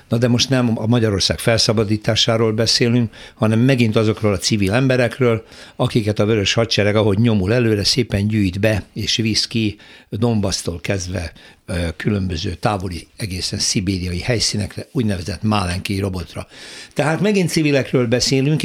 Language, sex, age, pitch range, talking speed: Hungarian, male, 60-79, 105-125 Hz, 130 wpm